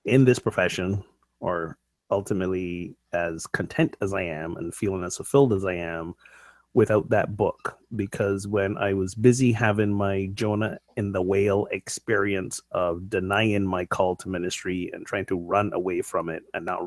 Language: English